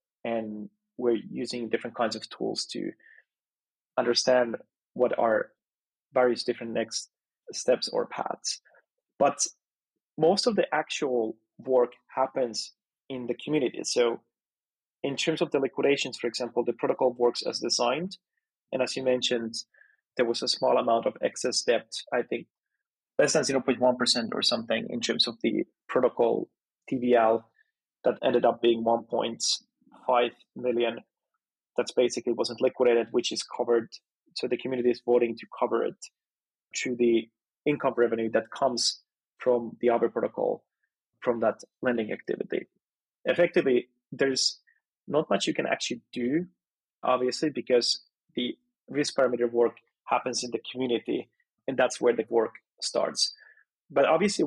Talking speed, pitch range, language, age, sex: 140 wpm, 120-150 Hz, English, 30-49, male